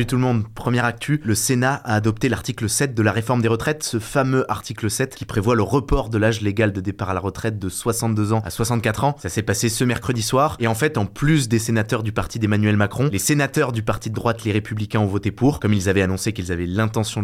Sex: male